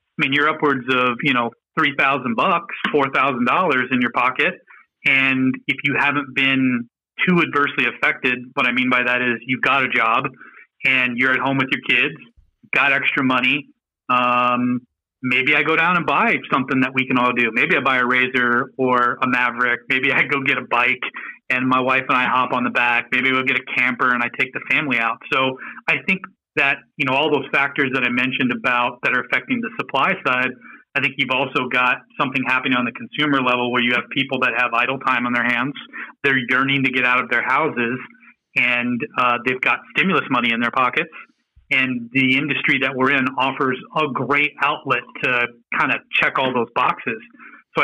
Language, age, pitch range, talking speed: English, 30-49, 125-140 Hz, 205 wpm